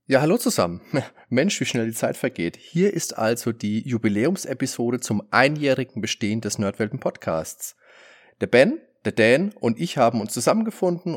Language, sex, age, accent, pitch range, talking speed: German, male, 30-49, German, 105-150 Hz, 150 wpm